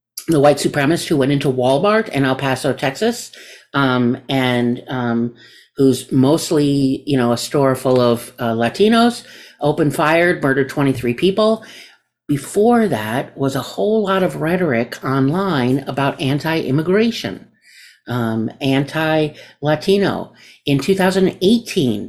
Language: English